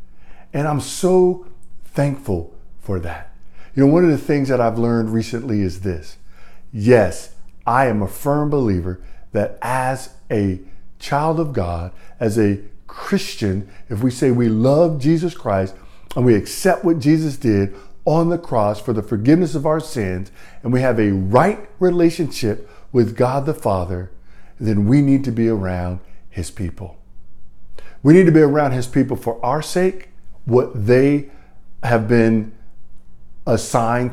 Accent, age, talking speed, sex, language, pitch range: American, 50-69, 155 wpm, male, English, 100-145 Hz